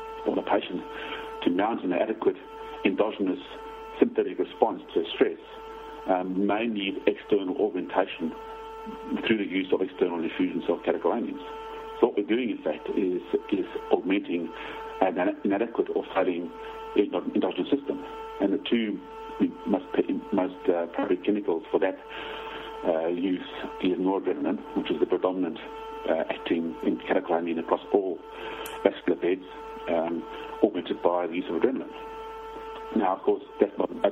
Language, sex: English, male